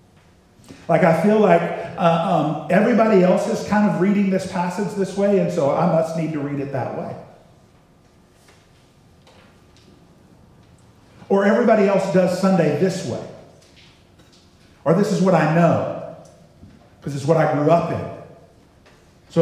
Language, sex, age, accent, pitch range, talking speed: English, male, 50-69, American, 165-265 Hz, 145 wpm